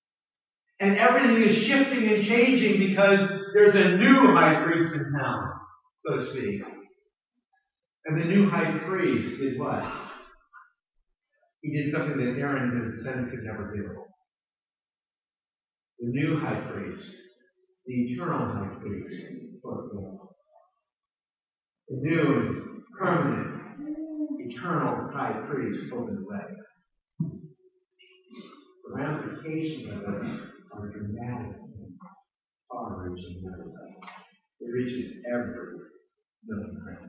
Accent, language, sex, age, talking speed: American, English, male, 50-69, 95 wpm